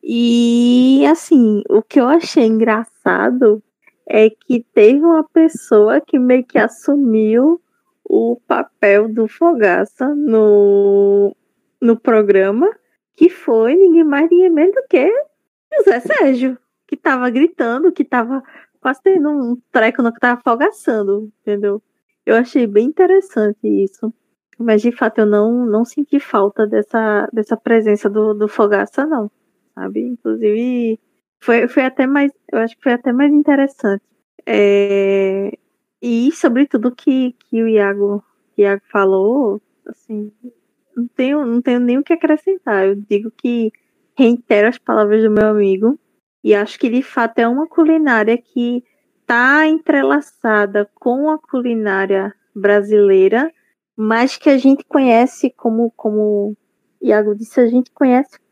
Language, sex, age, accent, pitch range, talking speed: Portuguese, female, 20-39, Brazilian, 210-285 Hz, 135 wpm